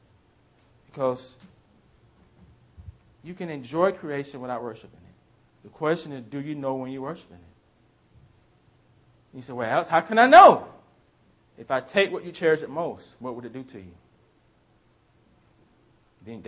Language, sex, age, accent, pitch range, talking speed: English, male, 30-49, American, 110-155 Hz, 150 wpm